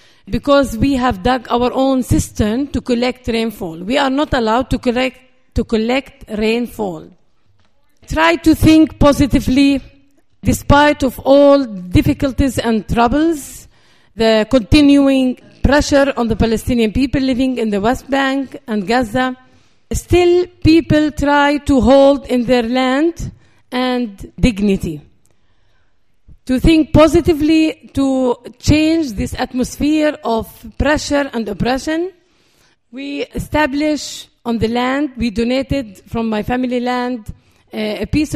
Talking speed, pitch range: 120 wpm, 230-280 Hz